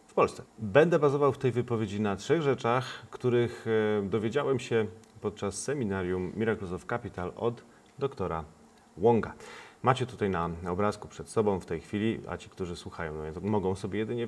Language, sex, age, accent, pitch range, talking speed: Polish, male, 40-59, native, 90-115 Hz, 160 wpm